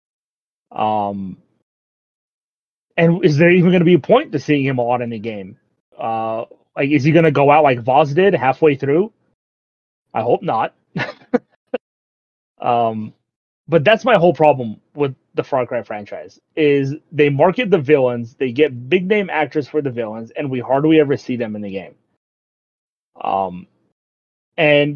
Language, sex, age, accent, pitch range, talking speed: English, male, 30-49, American, 120-165 Hz, 165 wpm